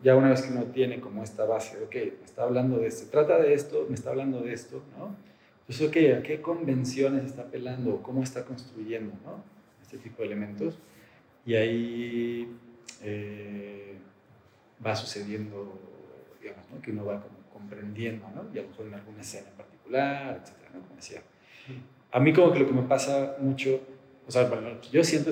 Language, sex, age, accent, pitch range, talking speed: Spanish, male, 40-59, Mexican, 110-135 Hz, 185 wpm